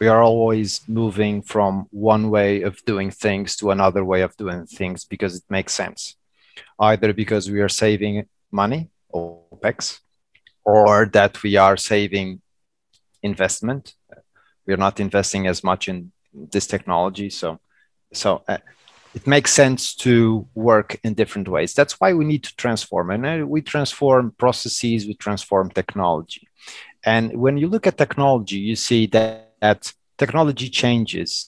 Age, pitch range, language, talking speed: 30-49, 100-120 Hz, English, 150 wpm